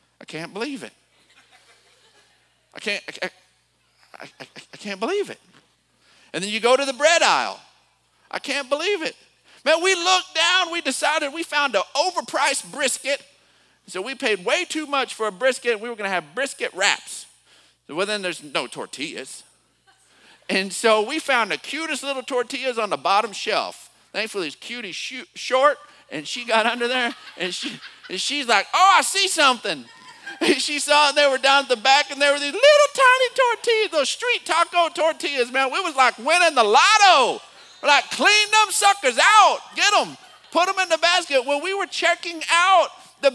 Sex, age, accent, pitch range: male, 50-69, American, 250-345 Hz